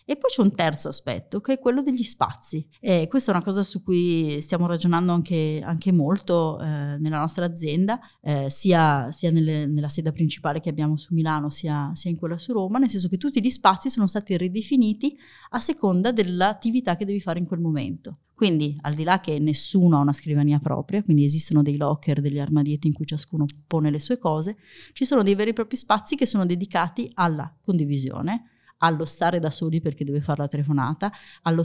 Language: Italian